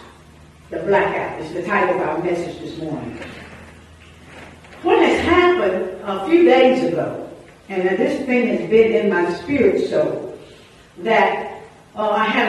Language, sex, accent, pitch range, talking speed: English, female, American, 210-310 Hz, 145 wpm